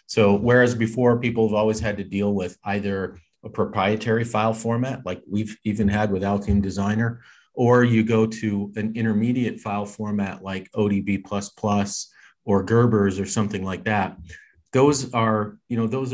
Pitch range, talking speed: 95-115 Hz, 160 wpm